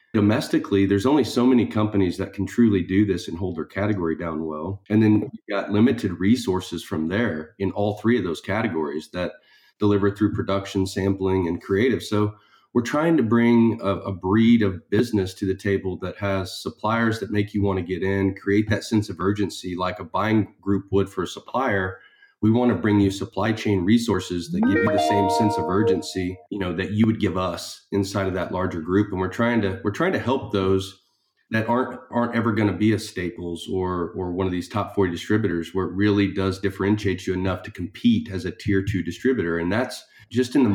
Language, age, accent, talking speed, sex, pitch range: English, 30-49, American, 215 wpm, male, 95-110 Hz